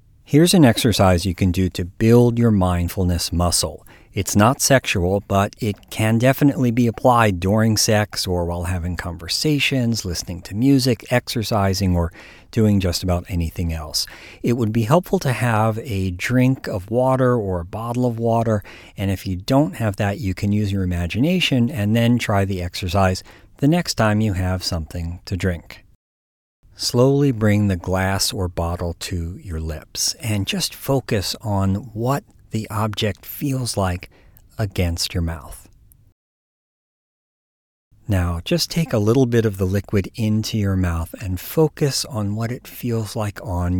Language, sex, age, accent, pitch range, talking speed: English, male, 50-69, American, 90-115 Hz, 160 wpm